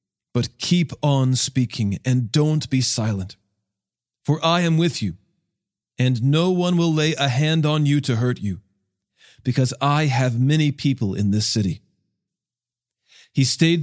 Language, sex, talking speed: English, male, 150 wpm